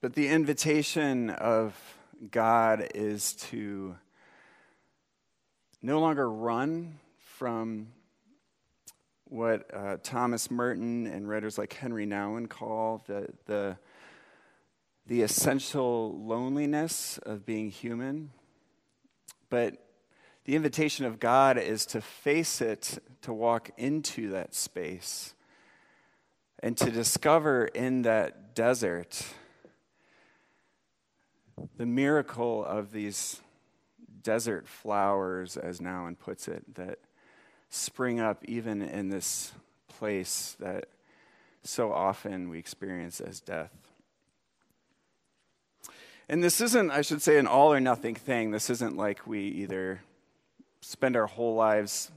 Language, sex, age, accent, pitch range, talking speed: English, male, 30-49, American, 105-130 Hz, 105 wpm